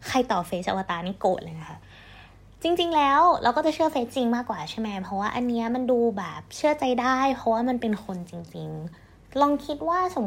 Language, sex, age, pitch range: Thai, female, 20-39, 195-270 Hz